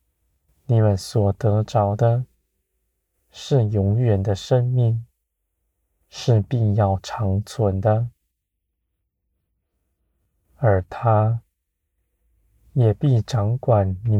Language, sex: Chinese, male